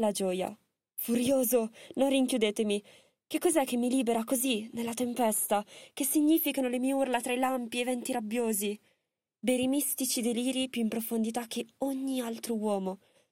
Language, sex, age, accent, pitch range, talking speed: Italian, female, 20-39, native, 210-255 Hz, 150 wpm